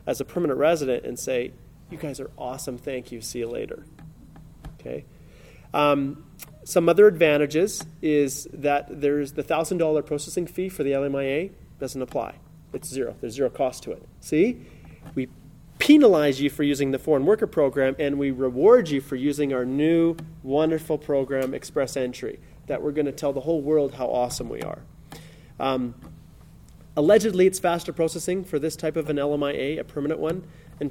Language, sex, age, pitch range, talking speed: English, male, 30-49, 140-165 Hz, 175 wpm